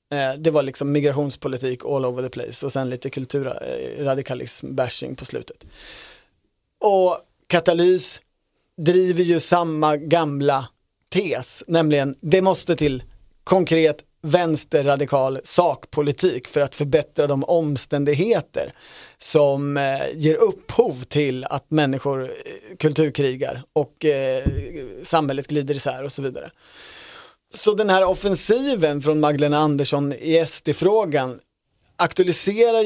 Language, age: Swedish, 30-49